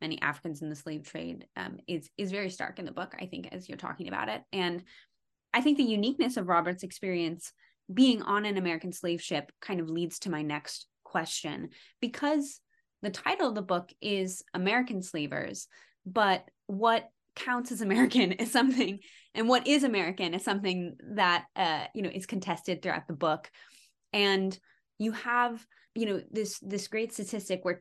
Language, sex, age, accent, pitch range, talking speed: English, female, 20-39, American, 170-220 Hz, 180 wpm